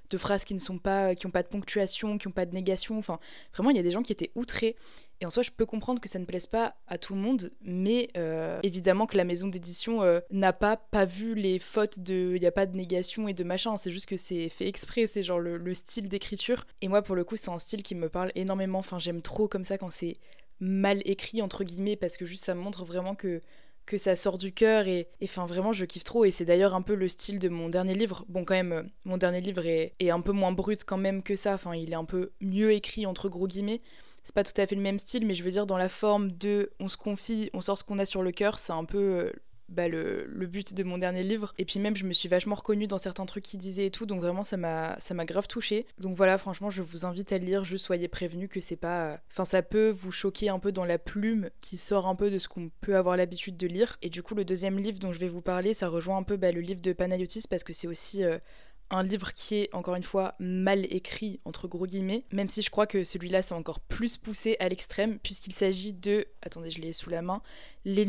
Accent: French